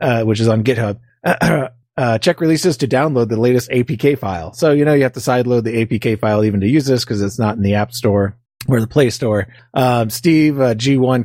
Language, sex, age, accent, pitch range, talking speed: English, male, 30-49, American, 105-130 Hz, 230 wpm